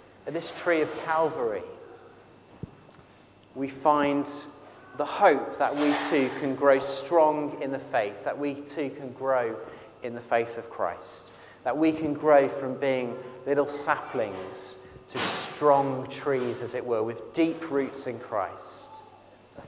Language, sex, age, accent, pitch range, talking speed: English, male, 30-49, British, 135-180 Hz, 145 wpm